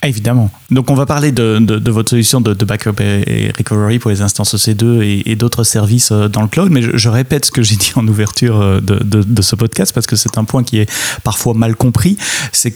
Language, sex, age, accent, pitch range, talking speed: French, male, 30-49, French, 105-125 Hz, 255 wpm